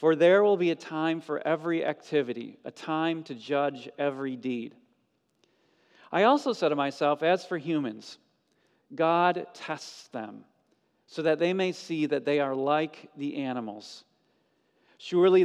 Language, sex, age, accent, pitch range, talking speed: English, male, 40-59, American, 135-165 Hz, 150 wpm